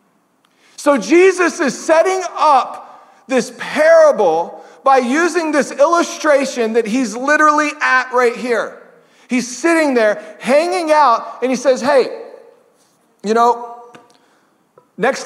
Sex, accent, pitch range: male, American, 235-285 Hz